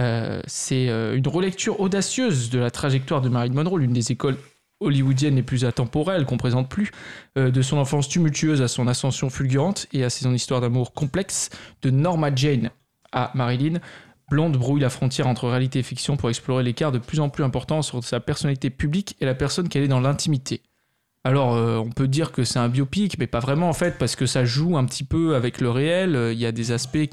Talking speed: 220 wpm